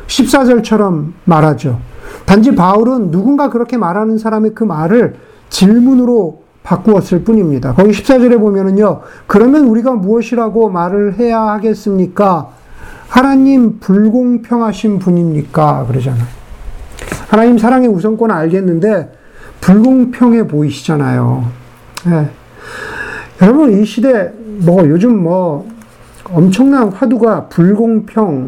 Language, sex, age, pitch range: Korean, male, 50-69, 170-230 Hz